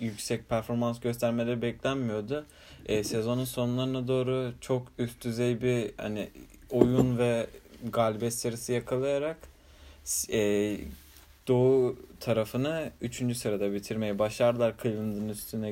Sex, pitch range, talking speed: male, 110-130 Hz, 105 wpm